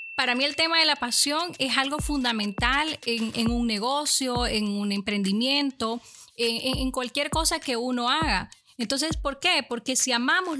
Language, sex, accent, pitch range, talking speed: Spanish, female, American, 230-275 Hz, 170 wpm